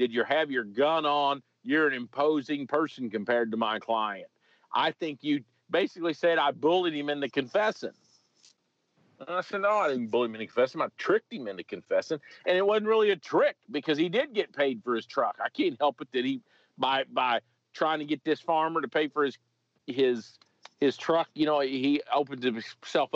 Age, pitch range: 50-69, 120-160 Hz